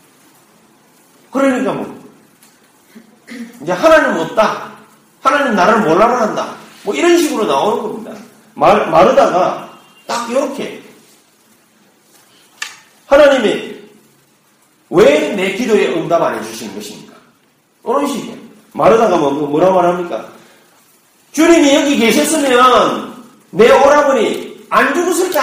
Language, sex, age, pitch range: Korean, male, 40-59, 165-260 Hz